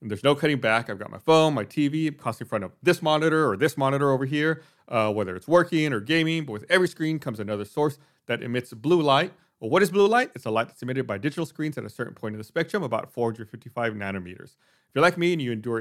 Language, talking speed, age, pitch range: English, 260 wpm, 30-49, 115-155 Hz